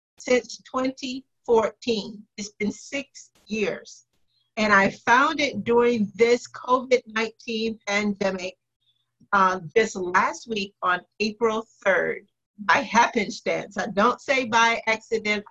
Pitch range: 190-225 Hz